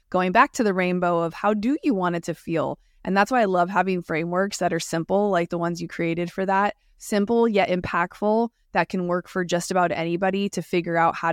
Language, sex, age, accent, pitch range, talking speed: English, female, 20-39, American, 175-200 Hz, 235 wpm